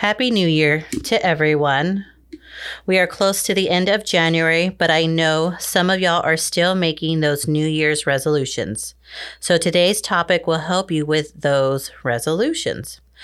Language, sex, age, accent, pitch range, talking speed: English, female, 30-49, American, 145-190 Hz, 160 wpm